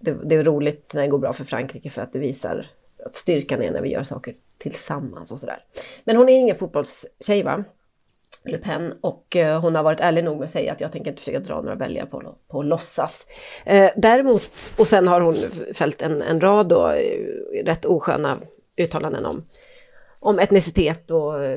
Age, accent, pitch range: 30-49, native, 160-260 Hz